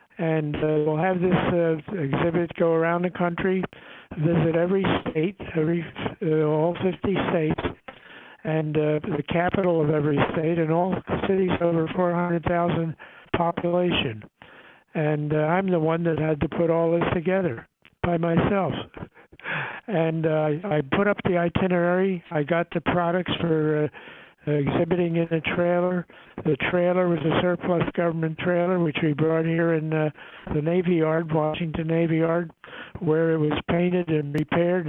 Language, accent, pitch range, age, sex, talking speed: English, American, 155-175 Hz, 60-79, male, 150 wpm